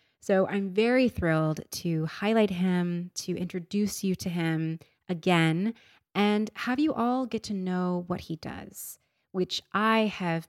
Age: 20-39